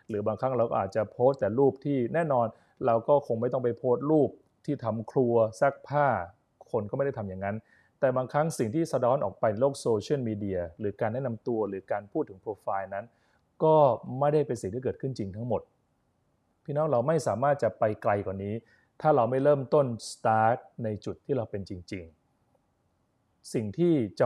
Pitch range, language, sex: 110-145 Hz, Thai, male